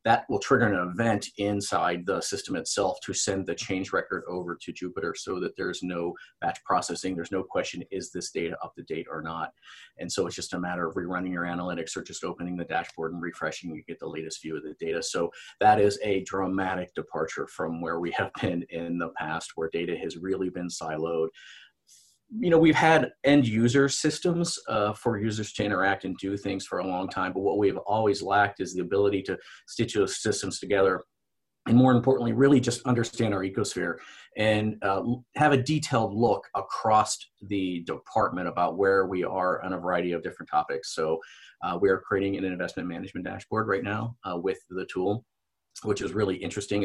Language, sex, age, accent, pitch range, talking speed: English, male, 40-59, American, 90-115 Hz, 200 wpm